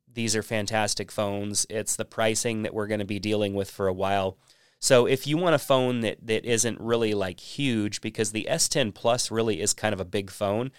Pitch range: 100-120 Hz